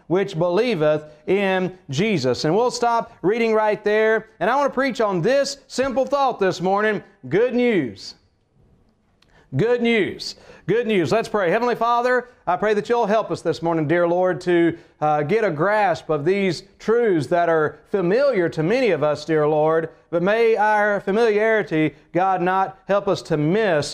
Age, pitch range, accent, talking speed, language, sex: 40-59, 160-210 Hz, American, 170 wpm, English, male